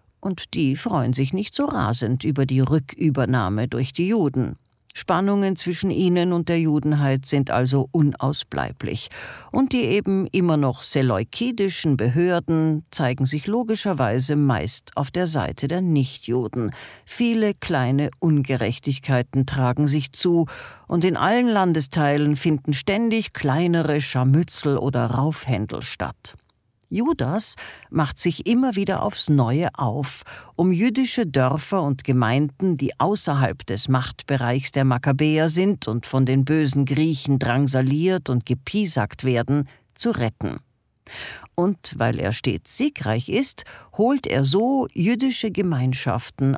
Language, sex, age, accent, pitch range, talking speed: German, female, 50-69, German, 130-180 Hz, 125 wpm